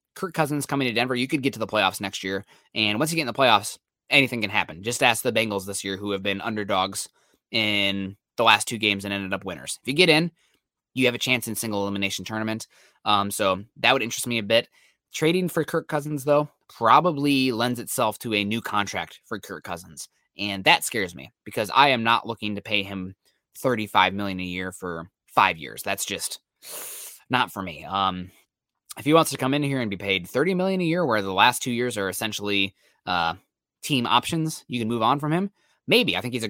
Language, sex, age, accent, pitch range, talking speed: English, male, 20-39, American, 100-140 Hz, 225 wpm